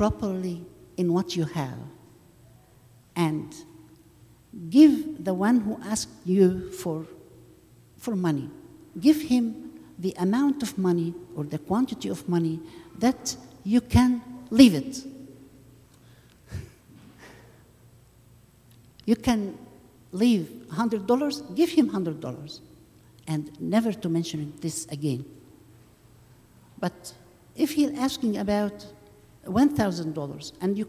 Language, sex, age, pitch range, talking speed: English, female, 60-79, 125-205 Hz, 105 wpm